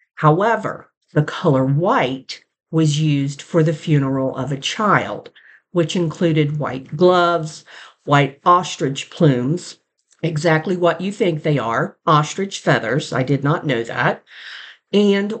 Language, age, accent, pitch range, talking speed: English, 50-69, American, 150-175 Hz, 130 wpm